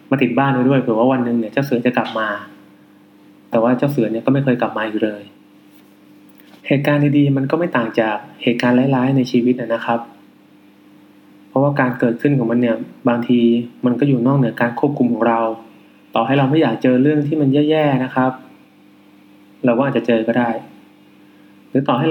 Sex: male